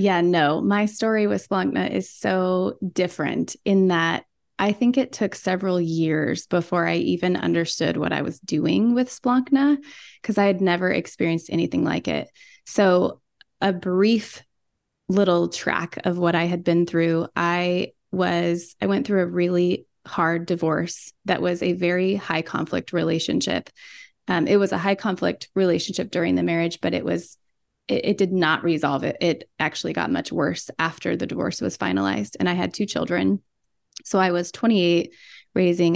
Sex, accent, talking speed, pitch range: female, American, 165 wpm, 165-195 Hz